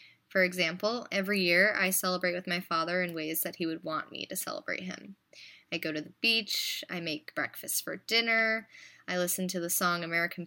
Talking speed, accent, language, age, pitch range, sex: 200 wpm, American, English, 20-39, 165-195 Hz, female